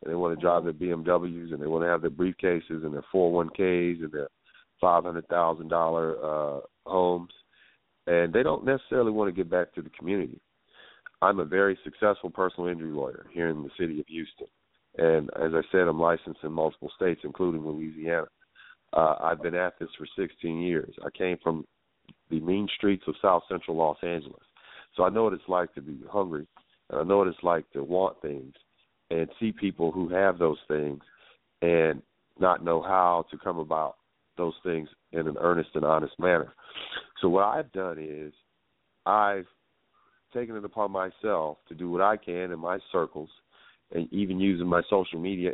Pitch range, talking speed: 80-95 Hz, 180 wpm